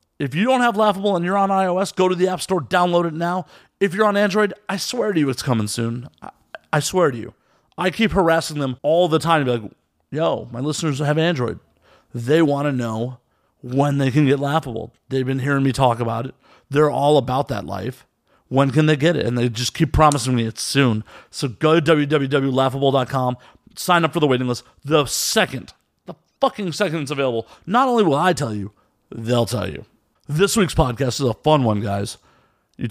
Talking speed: 215 wpm